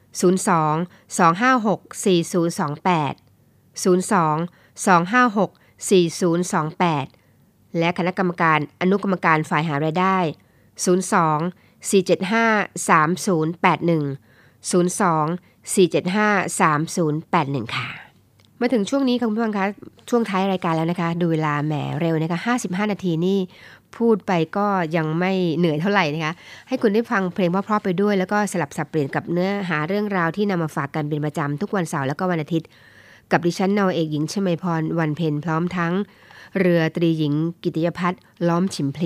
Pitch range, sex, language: 155-195 Hz, female, Thai